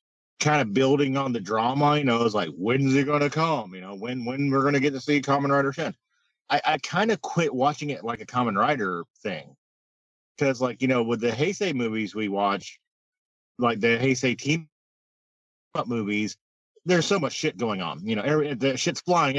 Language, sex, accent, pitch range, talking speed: English, male, American, 115-155 Hz, 205 wpm